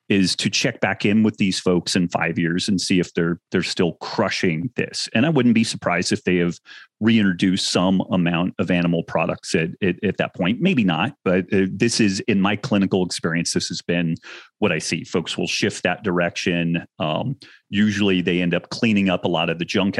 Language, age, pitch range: English, 30-49, 90-110 Hz